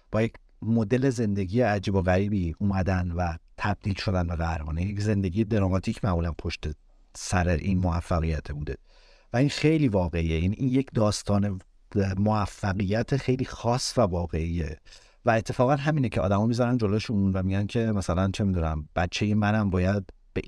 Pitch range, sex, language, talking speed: 85-110 Hz, male, Persian, 150 wpm